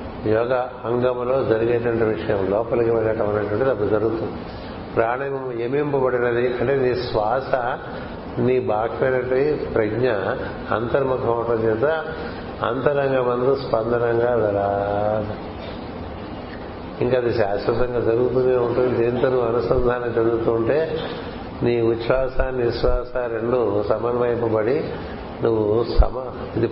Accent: native